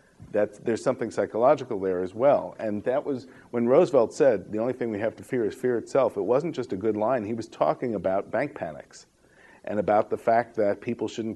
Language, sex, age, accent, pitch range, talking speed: English, male, 50-69, American, 95-125 Hz, 220 wpm